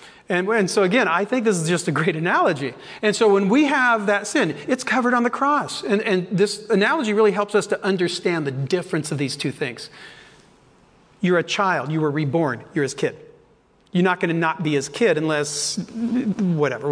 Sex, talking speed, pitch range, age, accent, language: male, 205 wpm, 165-230 Hz, 40-59, American, English